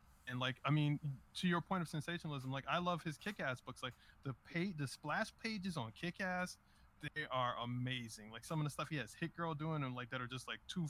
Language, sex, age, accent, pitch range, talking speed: English, male, 20-39, American, 125-155 Hz, 235 wpm